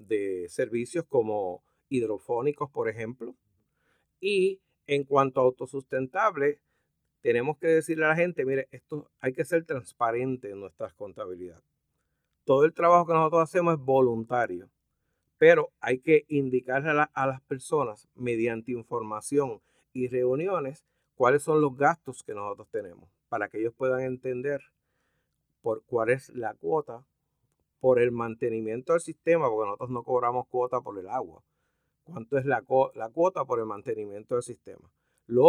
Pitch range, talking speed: 120-155 Hz, 150 wpm